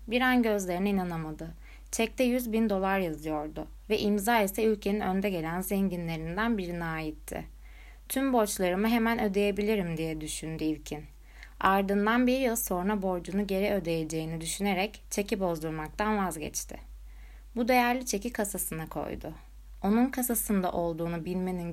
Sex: female